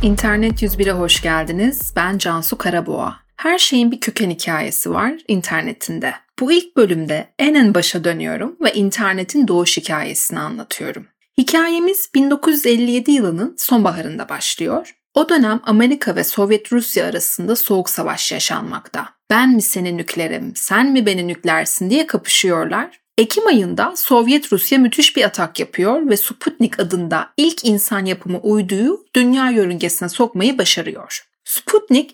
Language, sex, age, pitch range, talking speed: Turkish, female, 30-49, 195-275 Hz, 135 wpm